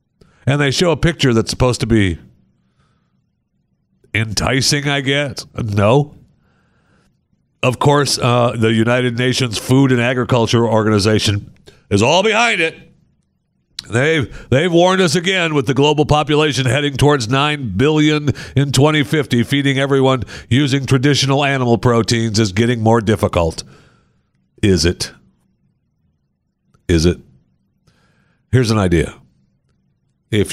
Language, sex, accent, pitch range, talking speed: English, male, American, 95-140 Hz, 120 wpm